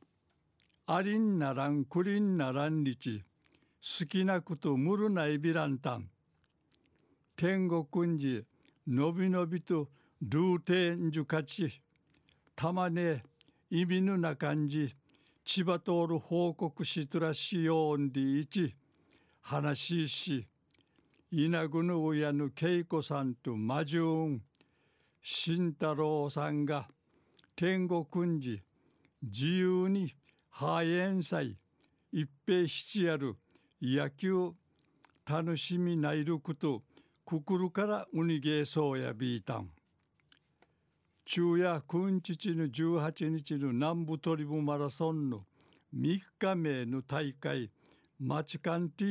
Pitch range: 145-170 Hz